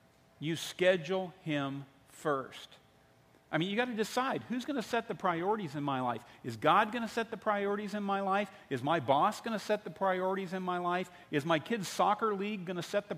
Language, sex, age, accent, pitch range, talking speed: English, male, 50-69, American, 130-190 Hz, 225 wpm